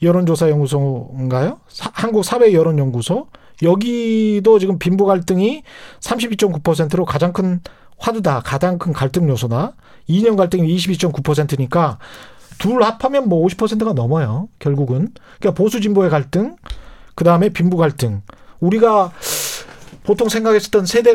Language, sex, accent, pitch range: Korean, male, native, 155-225 Hz